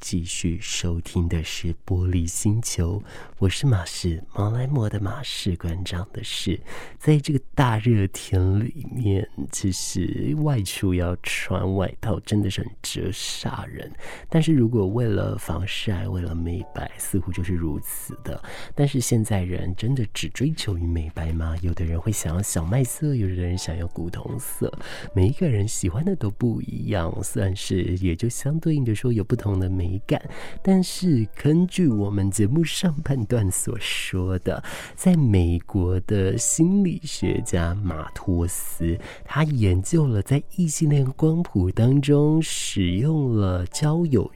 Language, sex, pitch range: Chinese, male, 95-140 Hz